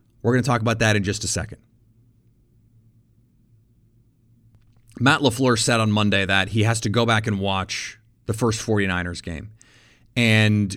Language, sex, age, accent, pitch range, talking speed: English, male, 30-49, American, 110-135 Hz, 155 wpm